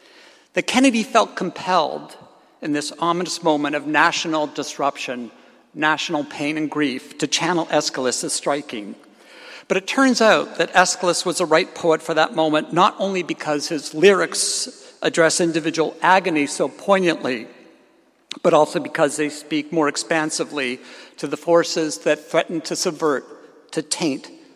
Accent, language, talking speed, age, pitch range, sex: American, Greek, 140 wpm, 60-79, 155-195 Hz, male